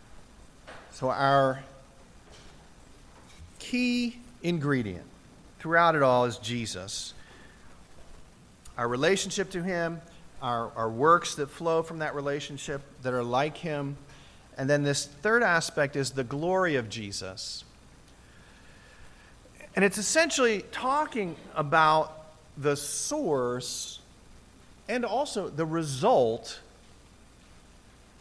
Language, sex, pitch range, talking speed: English, male, 125-180 Hz, 100 wpm